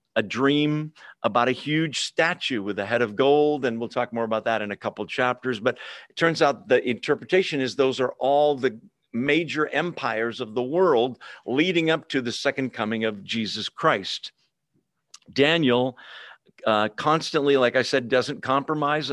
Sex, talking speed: male, 170 wpm